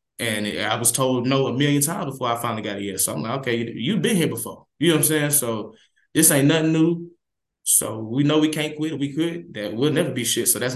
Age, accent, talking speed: 20-39, American, 260 wpm